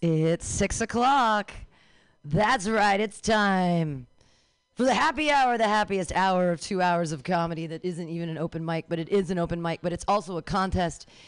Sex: female